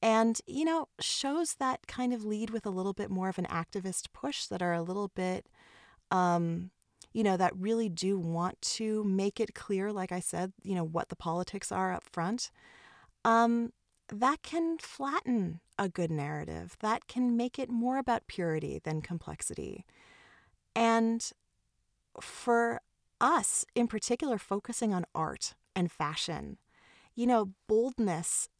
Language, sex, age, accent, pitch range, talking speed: English, female, 30-49, American, 175-230 Hz, 155 wpm